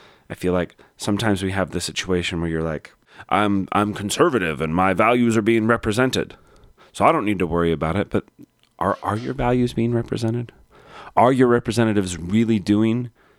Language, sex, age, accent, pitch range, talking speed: English, male, 30-49, American, 85-110 Hz, 180 wpm